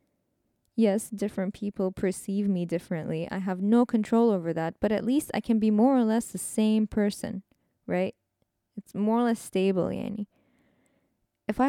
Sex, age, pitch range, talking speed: female, 20-39, 185-220 Hz, 170 wpm